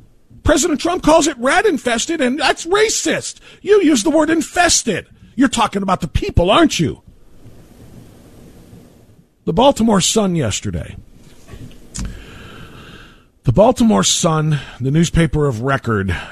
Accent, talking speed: American, 120 wpm